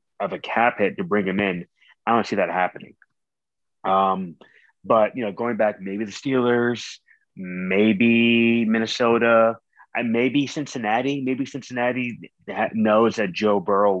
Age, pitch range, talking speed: 20-39, 100-115 Hz, 135 wpm